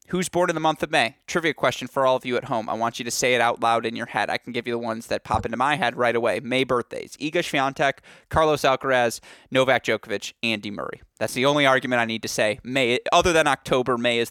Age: 20-39